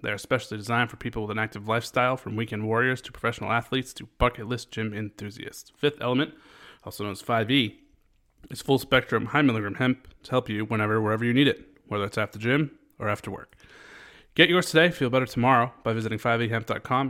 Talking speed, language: 195 wpm, English